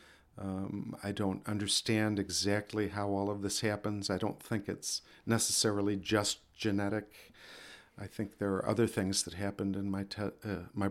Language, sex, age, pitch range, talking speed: English, male, 50-69, 95-105 Hz, 165 wpm